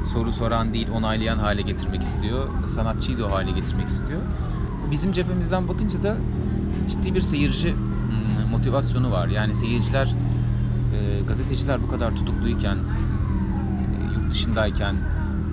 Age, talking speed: 30-49, 110 wpm